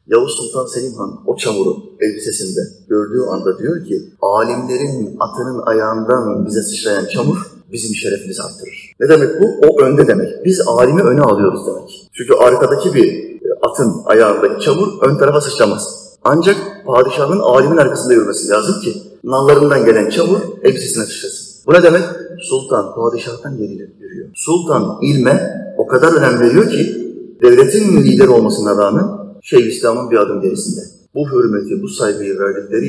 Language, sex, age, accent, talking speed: Turkish, male, 40-59, native, 145 wpm